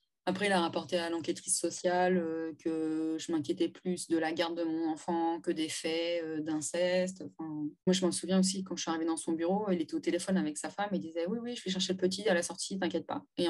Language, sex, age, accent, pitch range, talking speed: French, female, 20-39, French, 165-190 Hz, 250 wpm